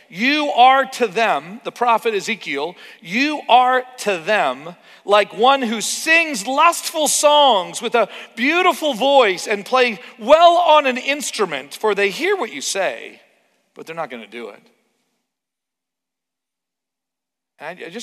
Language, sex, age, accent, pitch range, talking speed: English, male, 40-59, American, 160-260 Hz, 135 wpm